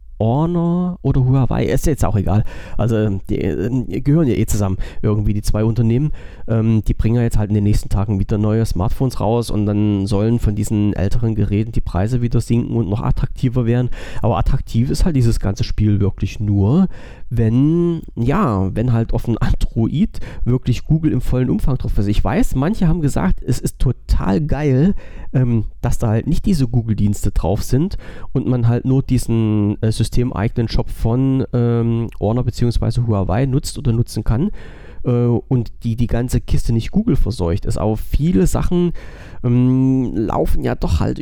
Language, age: German, 40-59